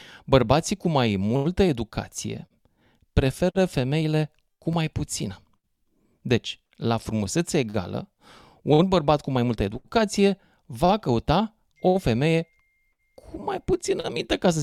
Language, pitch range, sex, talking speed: Romanian, 110-155 Hz, male, 125 wpm